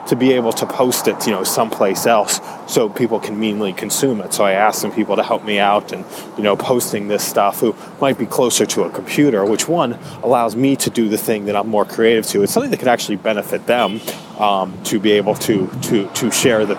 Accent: American